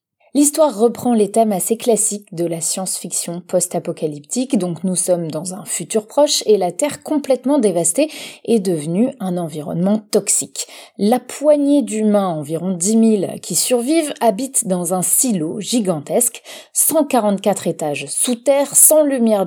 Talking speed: 140 wpm